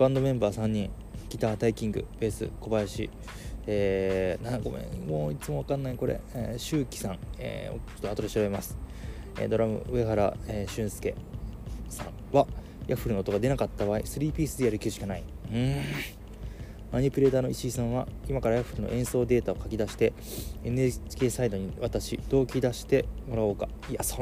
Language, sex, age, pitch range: Japanese, male, 20-39, 105-135 Hz